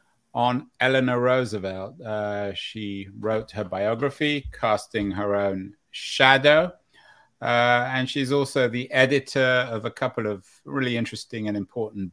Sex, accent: male, British